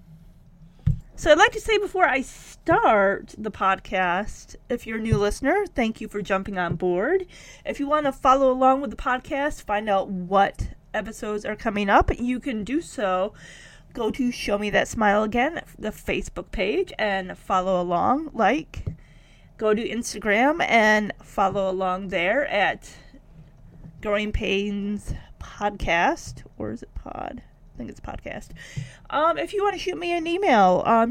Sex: female